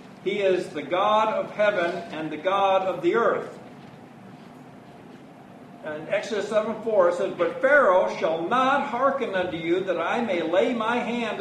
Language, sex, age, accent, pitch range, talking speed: English, male, 50-69, American, 190-245 Hz, 160 wpm